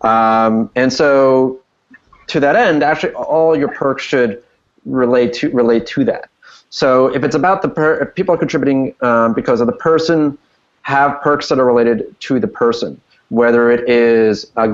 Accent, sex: American, male